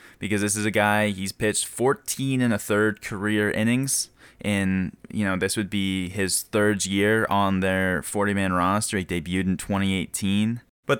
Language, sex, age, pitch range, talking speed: English, male, 10-29, 95-110 Hz, 170 wpm